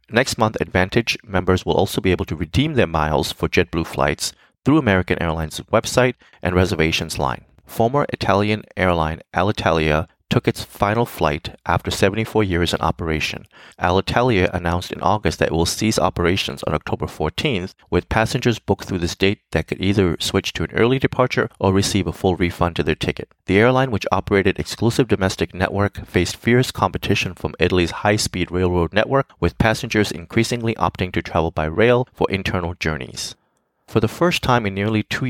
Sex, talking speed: male, 175 wpm